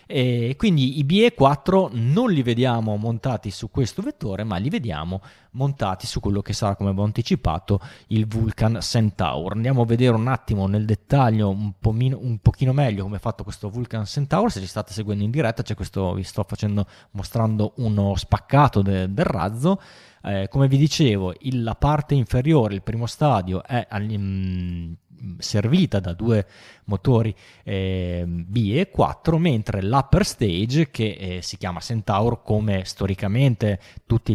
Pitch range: 100-125 Hz